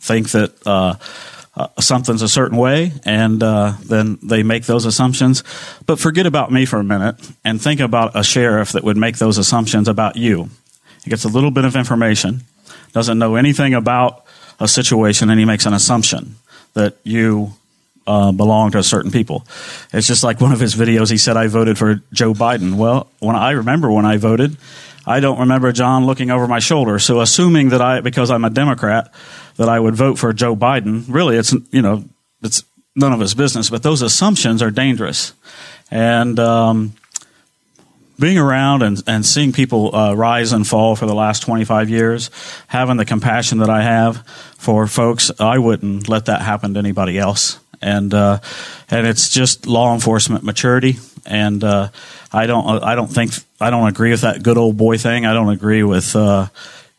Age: 40-59